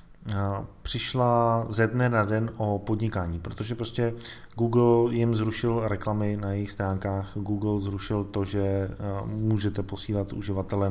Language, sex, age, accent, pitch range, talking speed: Czech, male, 20-39, native, 100-125 Hz, 125 wpm